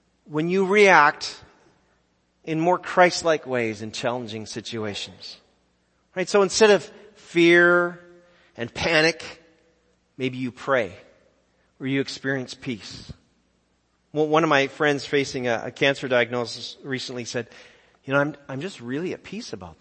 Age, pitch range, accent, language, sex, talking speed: 40-59, 115-165 Hz, American, English, male, 135 wpm